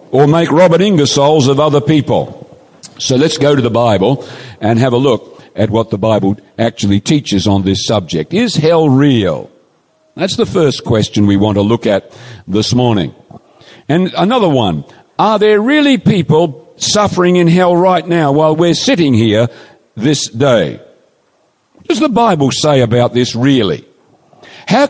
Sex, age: male, 50-69